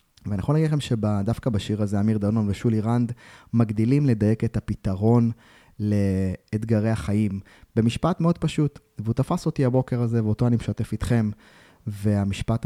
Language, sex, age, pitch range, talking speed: Hebrew, male, 20-39, 100-120 Hz, 140 wpm